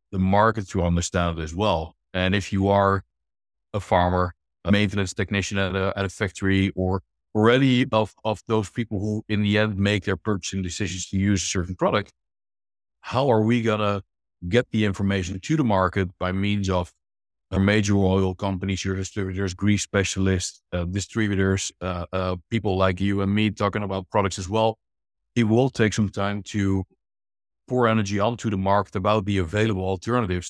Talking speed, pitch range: 175 wpm, 95-105 Hz